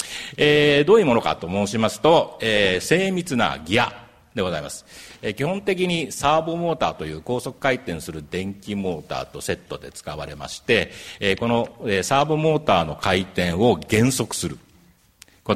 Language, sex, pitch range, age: Japanese, male, 95-140 Hz, 50-69